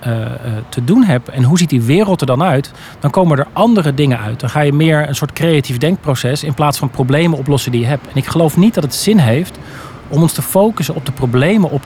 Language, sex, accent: Dutch, male, Dutch